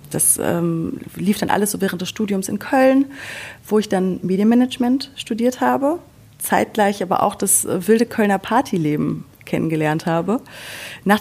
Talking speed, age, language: 145 wpm, 30-49, German